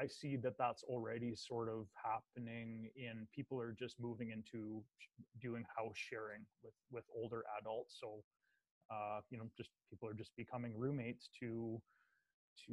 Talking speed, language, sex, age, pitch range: 155 wpm, English, male, 20-39, 110-125 Hz